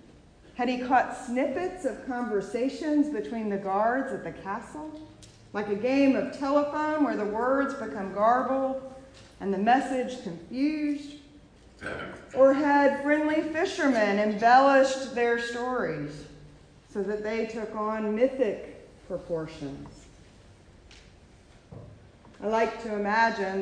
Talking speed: 110 wpm